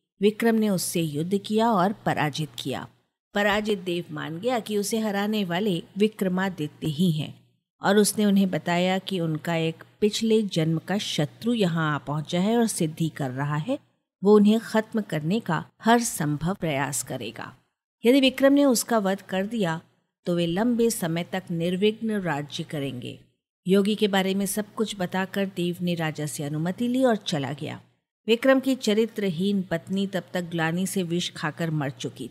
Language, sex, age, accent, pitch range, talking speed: Hindi, female, 50-69, native, 160-220 Hz, 170 wpm